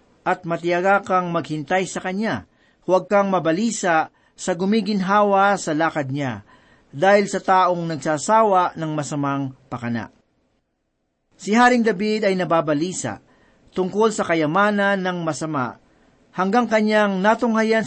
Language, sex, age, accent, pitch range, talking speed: Filipino, male, 50-69, native, 155-215 Hz, 115 wpm